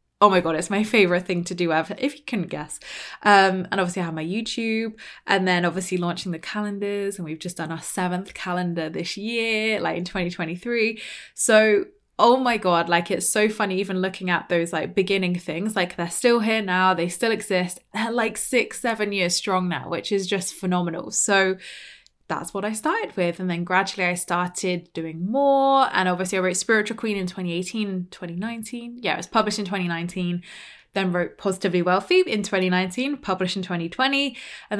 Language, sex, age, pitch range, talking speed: English, female, 20-39, 175-215 Hz, 190 wpm